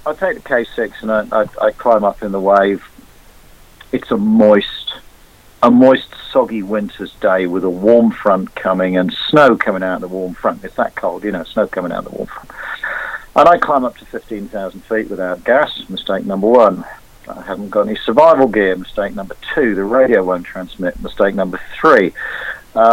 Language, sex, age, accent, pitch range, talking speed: English, male, 50-69, British, 95-115 Hz, 190 wpm